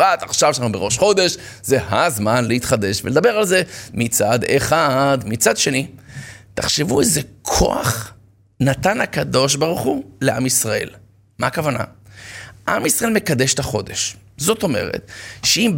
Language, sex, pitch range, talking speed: Hebrew, male, 115-185 Hz, 125 wpm